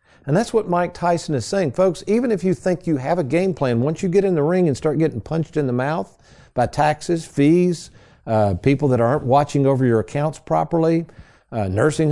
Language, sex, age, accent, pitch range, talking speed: English, male, 50-69, American, 115-160 Hz, 220 wpm